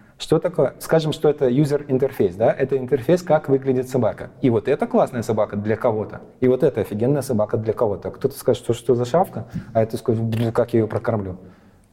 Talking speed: 195 wpm